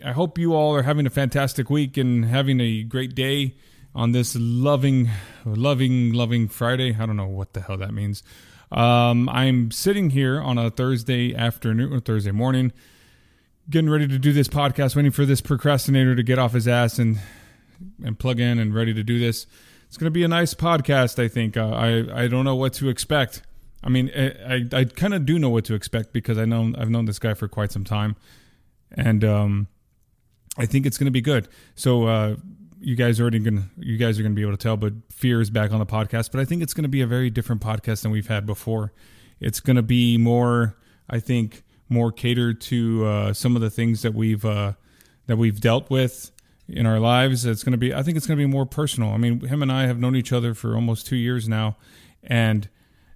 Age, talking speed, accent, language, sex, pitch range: 20-39, 225 wpm, American, English, male, 110-130 Hz